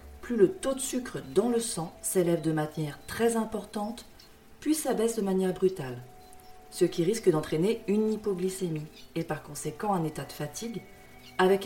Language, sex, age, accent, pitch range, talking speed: French, female, 40-59, French, 155-210 Hz, 165 wpm